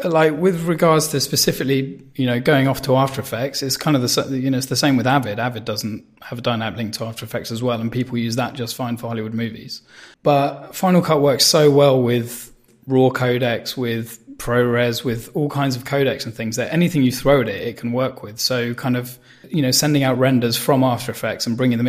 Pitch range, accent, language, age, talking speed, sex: 120-135 Hz, British, English, 20-39, 235 wpm, male